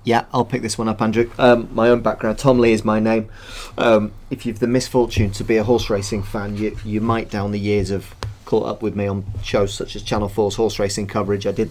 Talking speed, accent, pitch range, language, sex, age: 250 wpm, British, 100-120 Hz, English, male, 30-49